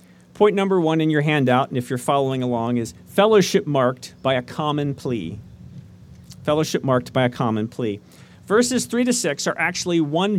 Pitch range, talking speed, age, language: 130-185 Hz, 180 wpm, 40-59, English